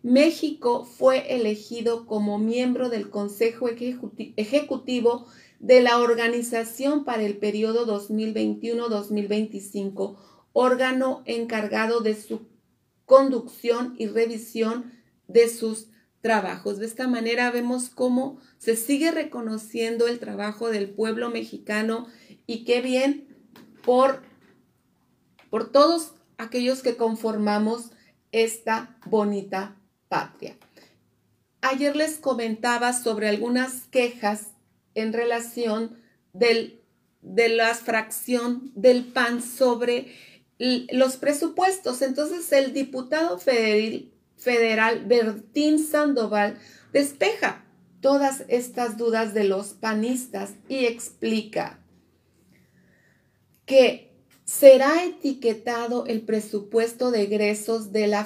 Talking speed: 95 wpm